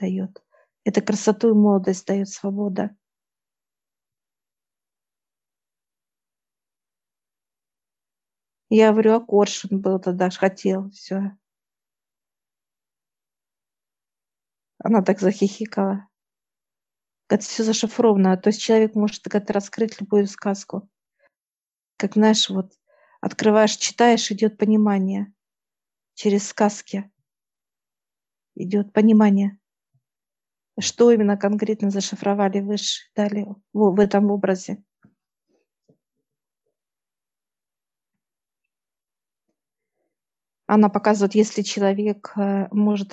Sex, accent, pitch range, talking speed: female, native, 200-215 Hz, 80 wpm